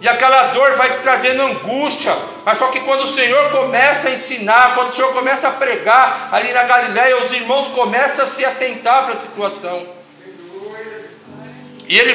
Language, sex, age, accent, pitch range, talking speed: Portuguese, male, 60-79, Brazilian, 220-260 Hz, 175 wpm